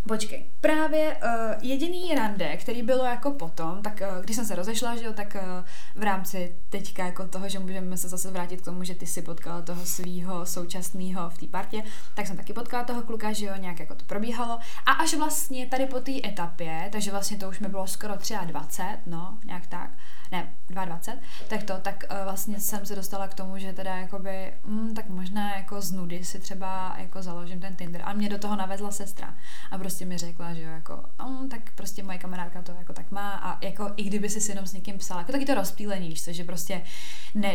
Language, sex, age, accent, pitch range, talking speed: Czech, female, 20-39, native, 180-215 Hz, 220 wpm